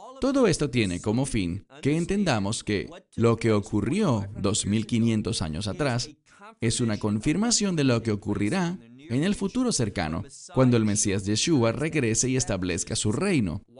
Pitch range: 105-155 Hz